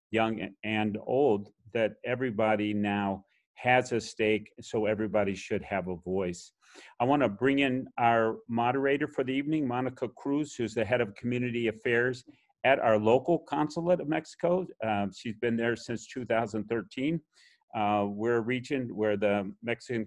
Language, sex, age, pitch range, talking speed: English, male, 50-69, 105-130 Hz, 155 wpm